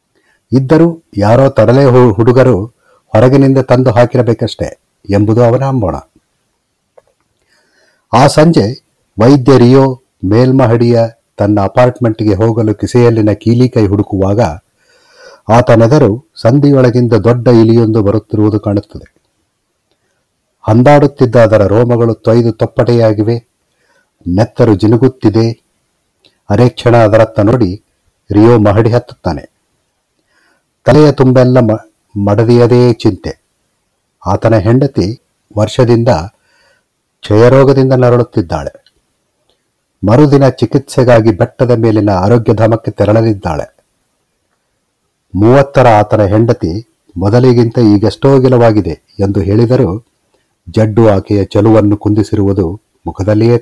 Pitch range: 105-125 Hz